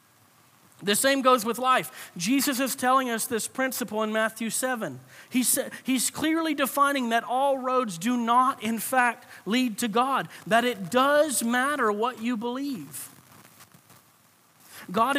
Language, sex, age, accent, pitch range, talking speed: English, male, 40-59, American, 175-245 Hz, 140 wpm